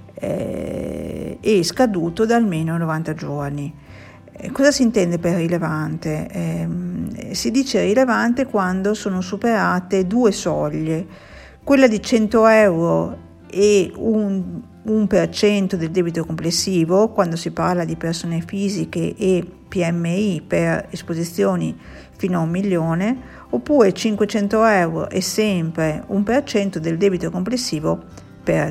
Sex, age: female, 50-69